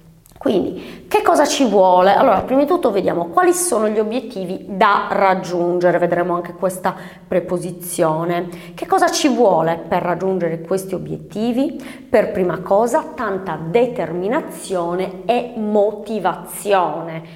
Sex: female